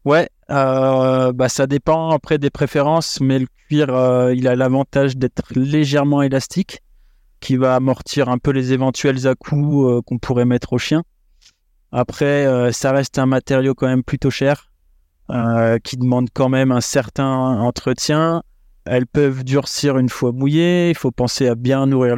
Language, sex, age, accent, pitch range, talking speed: French, male, 20-39, French, 125-145 Hz, 170 wpm